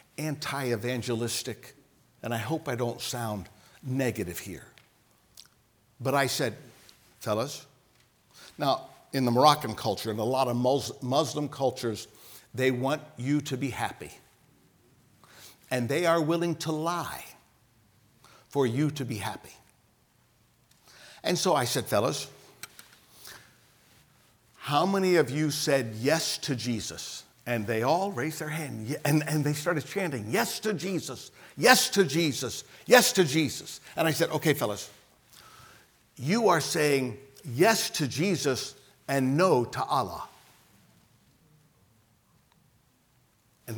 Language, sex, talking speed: English, male, 120 wpm